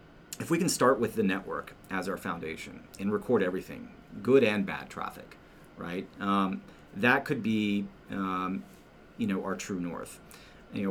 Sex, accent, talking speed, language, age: male, American, 160 wpm, English, 40-59